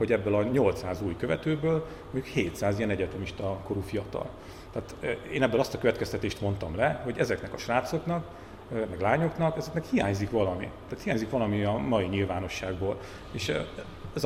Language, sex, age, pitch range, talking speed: Hungarian, male, 40-59, 95-115 Hz, 155 wpm